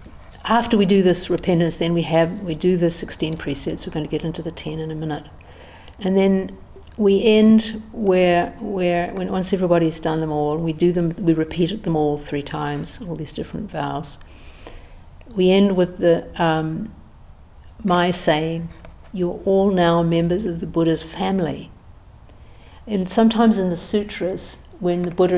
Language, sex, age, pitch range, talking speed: English, female, 60-79, 150-180 Hz, 170 wpm